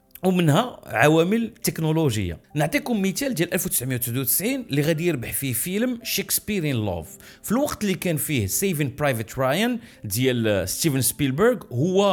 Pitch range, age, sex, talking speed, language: 125-200 Hz, 40-59, male, 130 wpm, Arabic